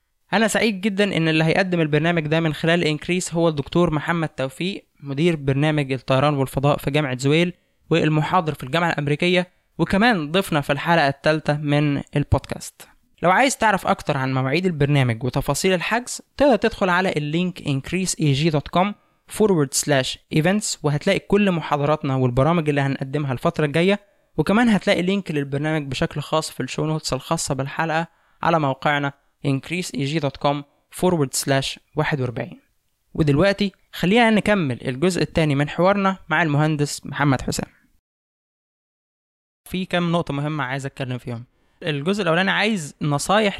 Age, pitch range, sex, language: 20-39, 140-175 Hz, male, Arabic